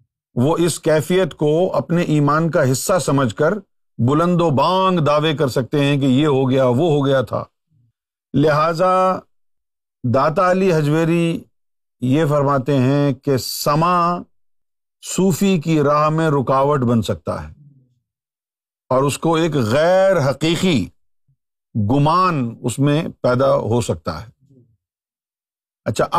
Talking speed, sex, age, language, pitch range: 130 wpm, male, 50-69, Urdu, 120-170 Hz